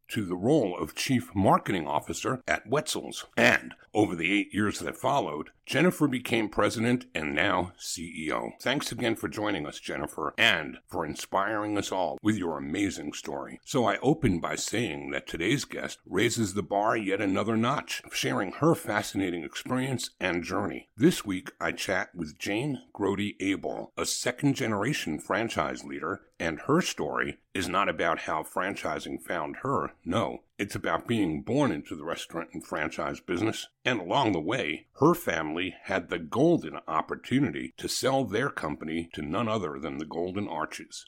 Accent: American